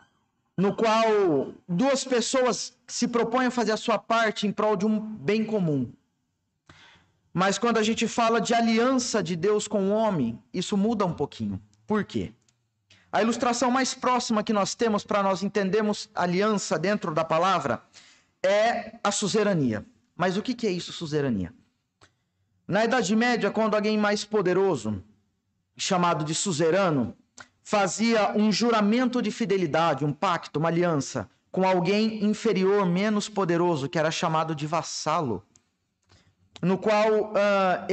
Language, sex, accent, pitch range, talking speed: Portuguese, male, Brazilian, 145-215 Hz, 140 wpm